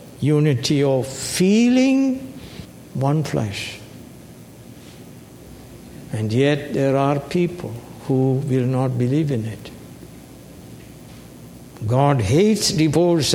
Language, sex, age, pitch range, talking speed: English, male, 60-79, 125-155 Hz, 85 wpm